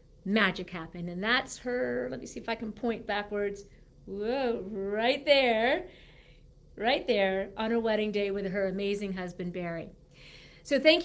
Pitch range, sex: 205-255 Hz, female